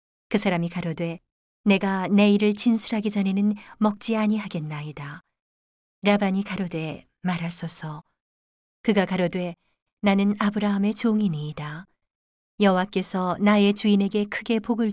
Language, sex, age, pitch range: Korean, female, 40-59, 170-210 Hz